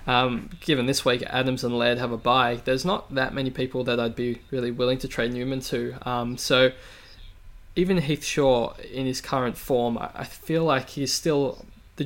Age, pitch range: 20-39, 120-145 Hz